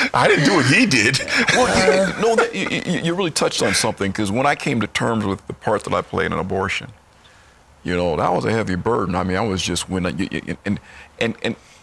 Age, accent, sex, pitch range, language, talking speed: 50-69, American, male, 80-105 Hz, English, 245 wpm